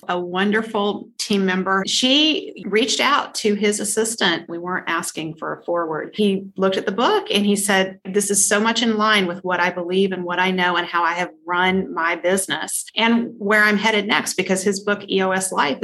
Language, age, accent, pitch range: English, 40-59, American, 185-225 Hz